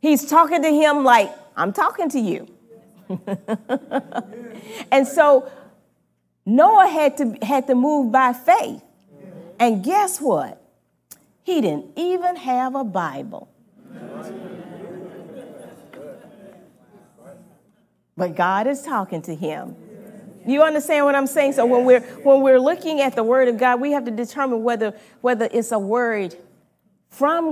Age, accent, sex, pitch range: 40-59, American, female, 195-275 Hz